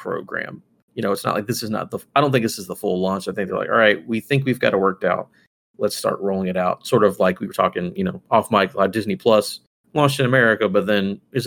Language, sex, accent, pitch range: English, male, American, 100-135 Hz